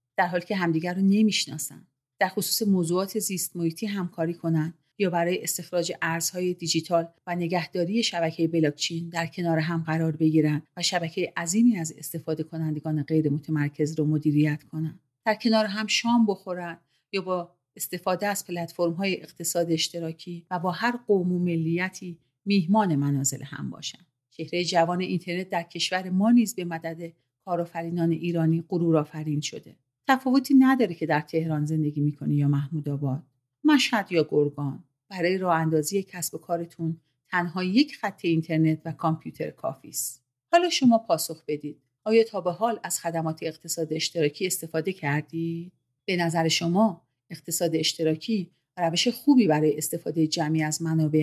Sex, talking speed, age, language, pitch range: female, 145 wpm, 40-59, Persian, 155-185 Hz